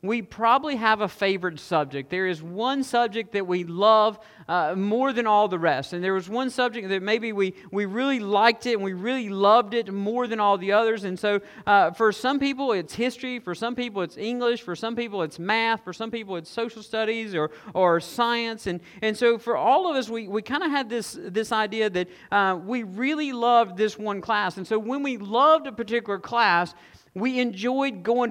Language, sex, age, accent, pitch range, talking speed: English, male, 50-69, American, 190-235 Hz, 215 wpm